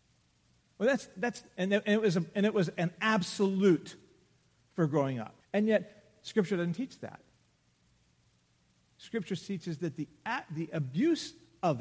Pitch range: 165-225 Hz